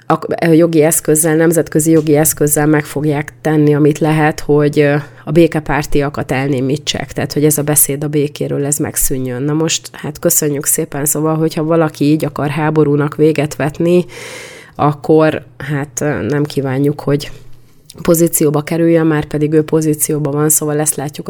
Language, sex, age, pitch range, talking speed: Hungarian, female, 30-49, 145-160 Hz, 145 wpm